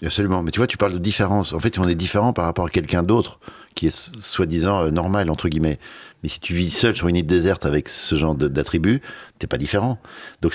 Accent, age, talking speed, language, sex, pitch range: French, 50-69, 255 wpm, French, male, 75-100 Hz